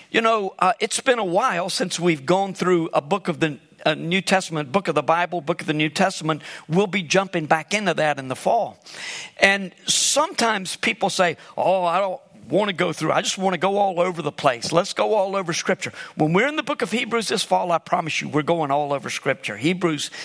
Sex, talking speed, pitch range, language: male, 230 wpm, 165-220 Hz, English